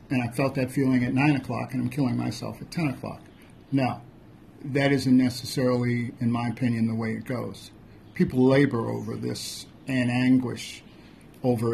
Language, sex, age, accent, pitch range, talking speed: English, male, 50-69, American, 115-135 Hz, 170 wpm